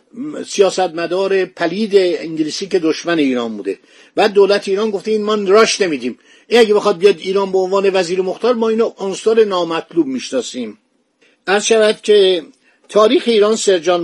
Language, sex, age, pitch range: Persian, male, 50-69, 180-235 Hz